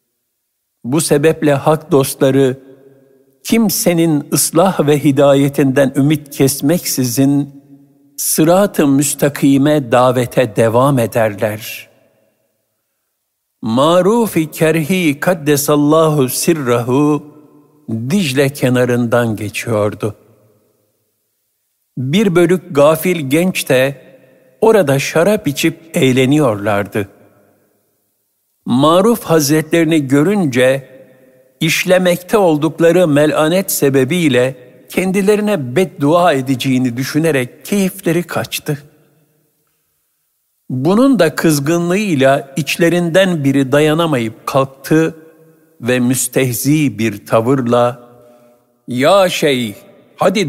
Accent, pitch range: native, 130-165 Hz